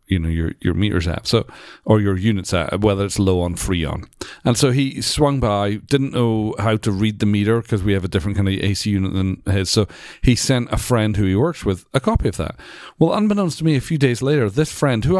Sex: male